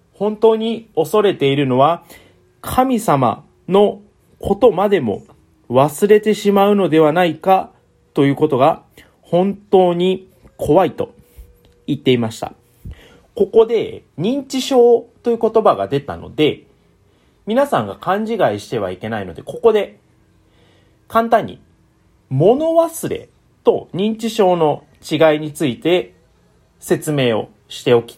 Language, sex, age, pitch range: Japanese, male, 30-49, 140-235 Hz